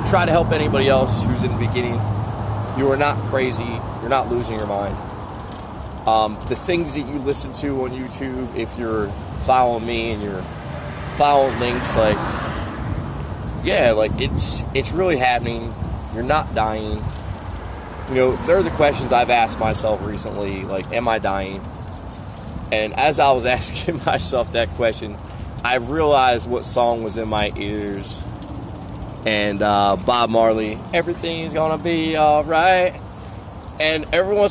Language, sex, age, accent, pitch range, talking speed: English, male, 20-39, American, 105-145 Hz, 155 wpm